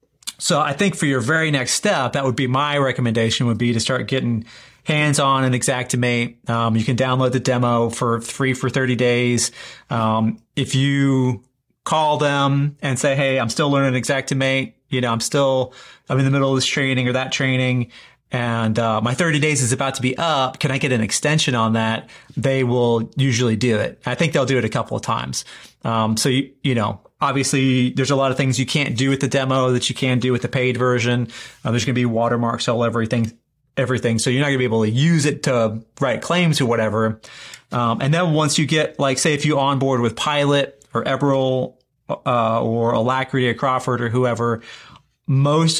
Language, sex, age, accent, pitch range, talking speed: English, male, 30-49, American, 120-140 Hz, 210 wpm